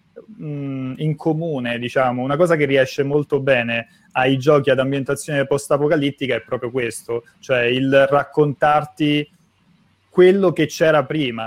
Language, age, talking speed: Italian, 30-49, 125 wpm